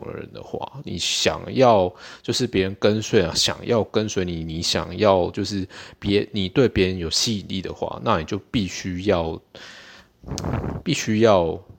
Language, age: Chinese, 20-39